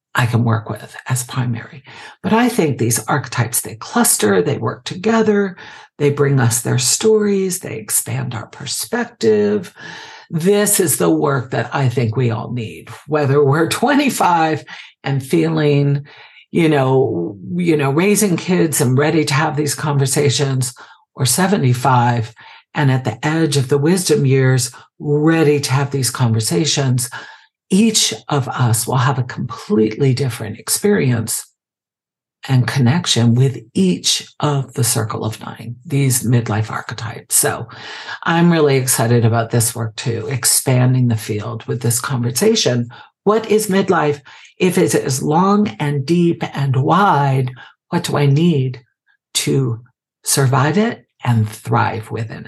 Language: English